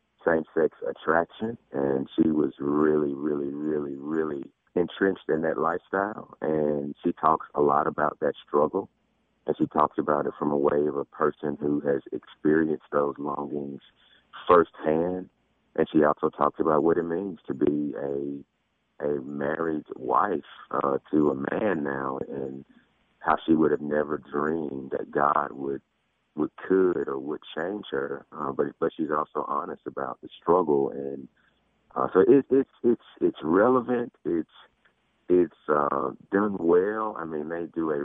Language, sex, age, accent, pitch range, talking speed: English, male, 40-59, American, 70-85 Hz, 160 wpm